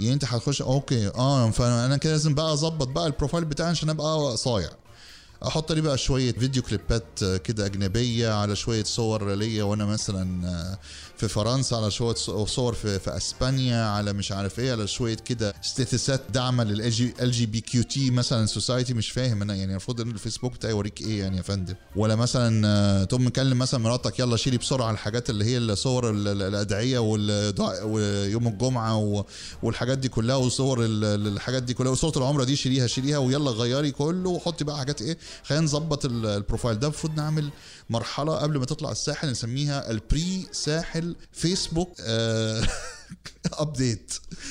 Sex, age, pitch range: male, 30-49, 110-145 Hz